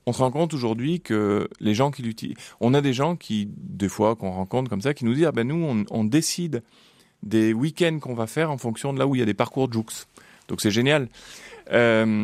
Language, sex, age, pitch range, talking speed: French, male, 30-49, 105-140 Hz, 255 wpm